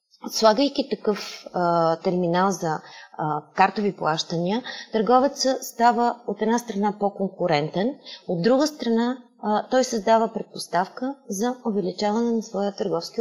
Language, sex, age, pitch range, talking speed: Bulgarian, female, 30-49, 185-235 Hz, 120 wpm